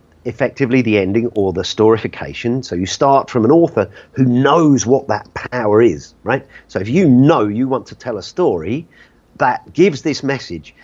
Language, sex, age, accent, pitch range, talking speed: French, male, 40-59, British, 105-140 Hz, 185 wpm